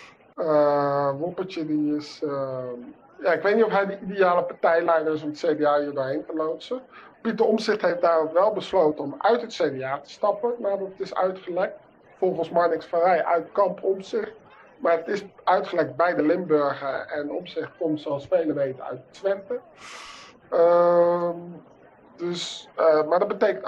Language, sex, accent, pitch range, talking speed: Dutch, male, Dutch, 150-195 Hz, 165 wpm